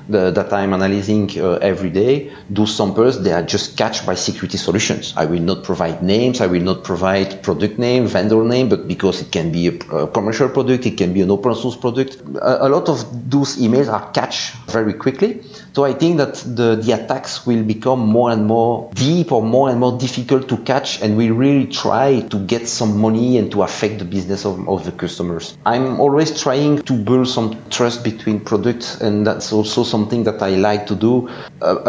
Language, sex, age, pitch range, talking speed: English, male, 30-49, 105-130 Hz, 205 wpm